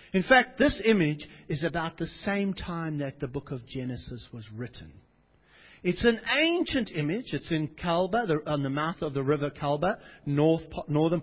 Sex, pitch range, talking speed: male, 140-210 Hz, 175 wpm